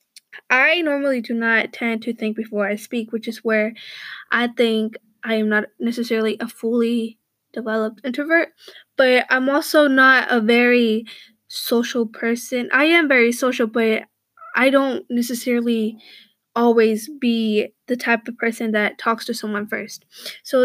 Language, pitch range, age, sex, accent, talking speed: English, 225-260 Hz, 10-29, female, American, 150 wpm